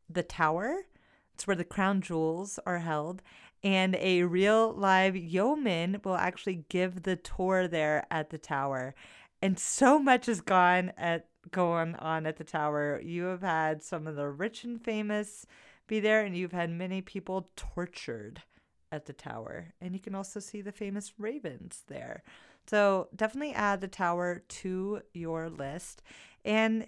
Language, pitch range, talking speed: English, 155-200 Hz, 160 wpm